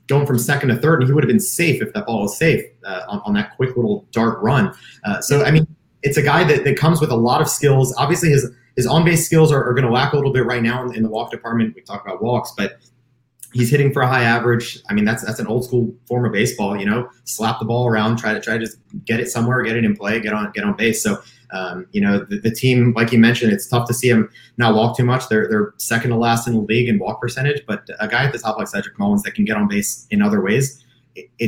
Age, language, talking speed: 30-49, English, 290 wpm